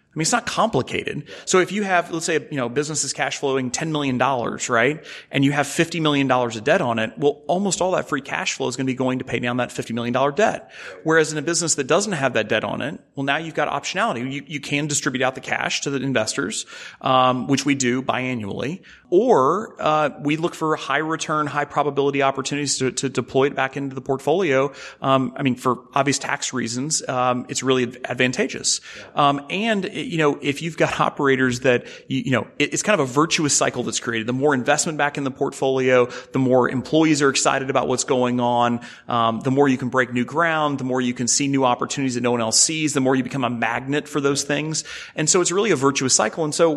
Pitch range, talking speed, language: 125-150 Hz, 235 wpm, English